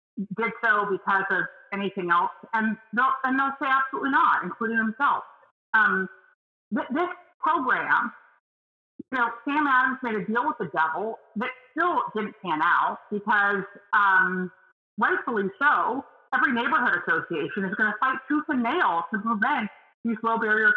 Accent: American